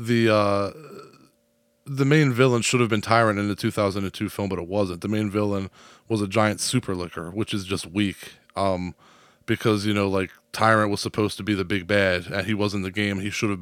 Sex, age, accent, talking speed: male, 20-39, American, 215 wpm